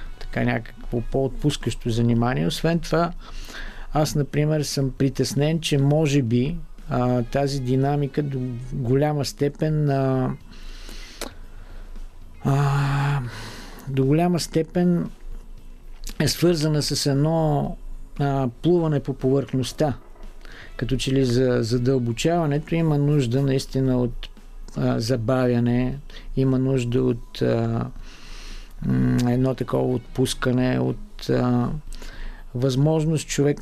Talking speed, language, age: 95 wpm, Bulgarian, 50-69